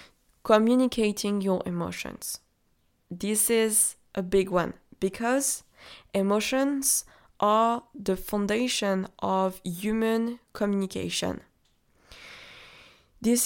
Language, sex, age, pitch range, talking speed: English, female, 20-39, 185-225 Hz, 75 wpm